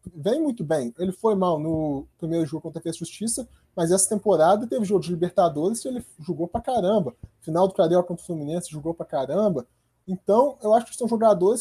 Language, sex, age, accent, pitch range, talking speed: Portuguese, male, 20-39, Brazilian, 180-235 Hz, 205 wpm